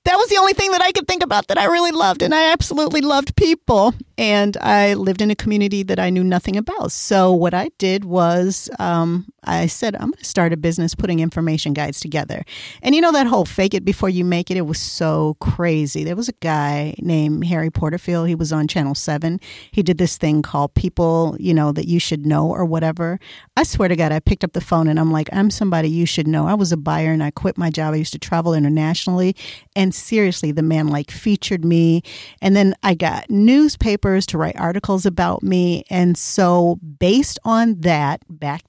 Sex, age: female, 40-59